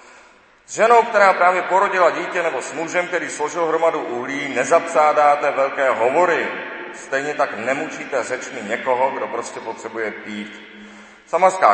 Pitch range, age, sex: 115-145 Hz, 40-59, male